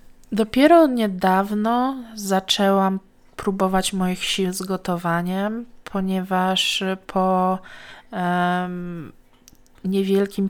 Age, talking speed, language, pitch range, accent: 20-39, 70 wpm, Polish, 175-210 Hz, native